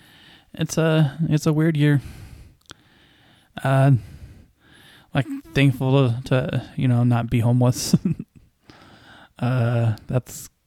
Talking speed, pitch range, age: 100 wpm, 120-150 Hz, 10-29